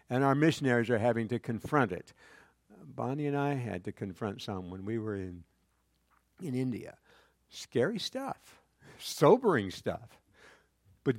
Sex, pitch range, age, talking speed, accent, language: male, 100-155 Hz, 60-79, 140 wpm, American, English